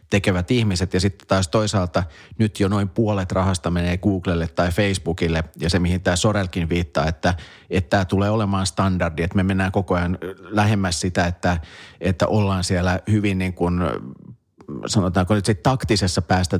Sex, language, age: male, Finnish, 30-49